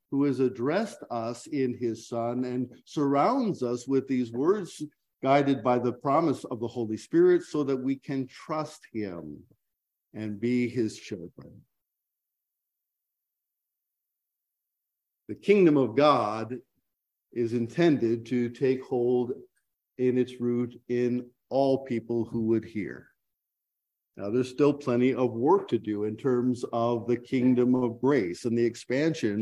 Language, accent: English, American